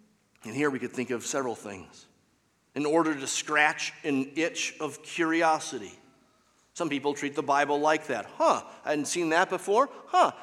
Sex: male